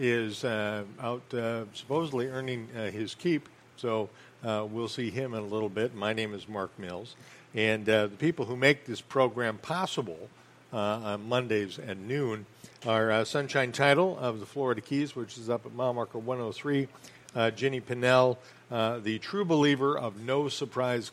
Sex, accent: male, American